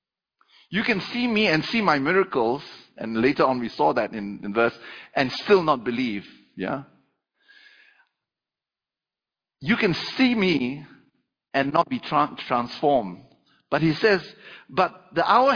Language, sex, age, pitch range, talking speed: English, male, 50-69, 145-220 Hz, 145 wpm